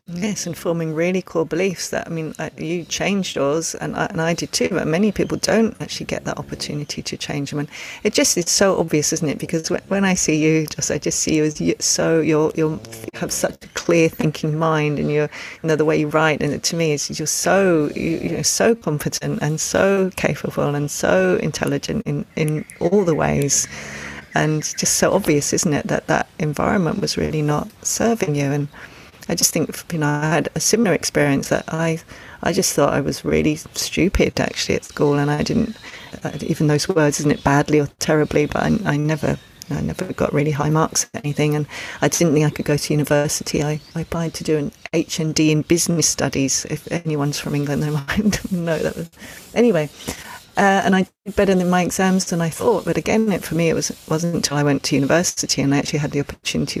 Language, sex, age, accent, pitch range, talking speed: English, female, 40-59, British, 145-175 Hz, 220 wpm